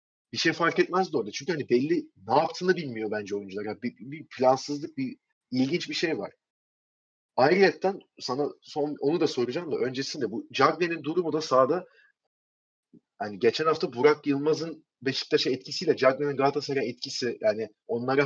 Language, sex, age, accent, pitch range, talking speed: Turkish, male, 30-49, native, 135-185 Hz, 160 wpm